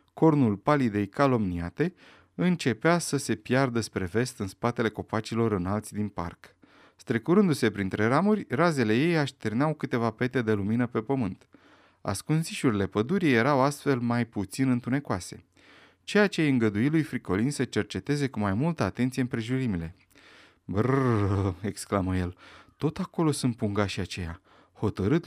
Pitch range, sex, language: 105-145 Hz, male, Romanian